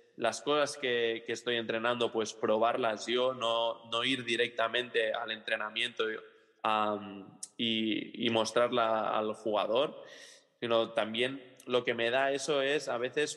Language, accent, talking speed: Spanish, Spanish, 145 wpm